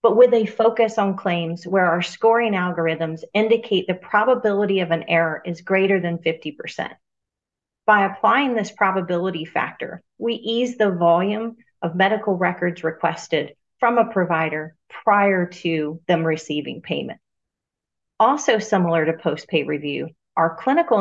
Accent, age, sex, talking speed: American, 40-59, female, 135 wpm